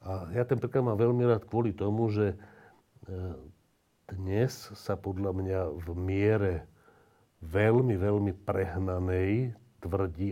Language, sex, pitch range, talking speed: Slovak, male, 90-110 Hz, 115 wpm